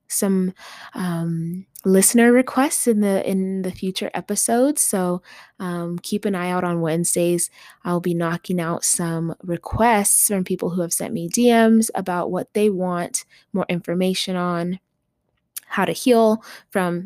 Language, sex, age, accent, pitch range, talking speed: English, female, 20-39, American, 175-210 Hz, 150 wpm